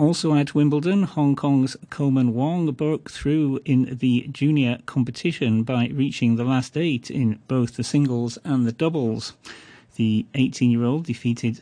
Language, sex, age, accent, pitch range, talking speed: English, male, 40-59, British, 120-145 Hz, 145 wpm